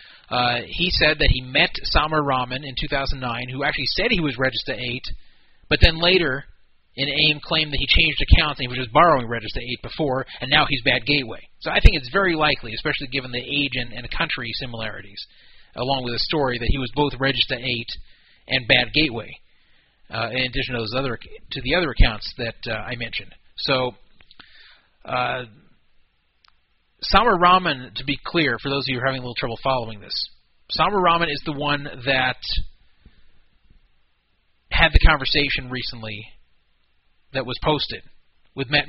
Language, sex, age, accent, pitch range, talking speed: English, male, 30-49, American, 115-145 Hz, 175 wpm